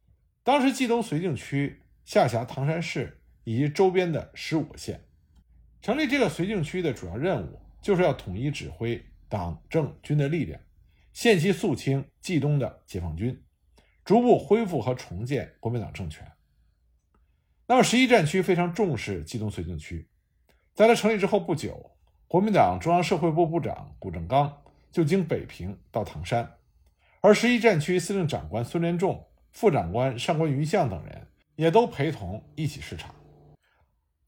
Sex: male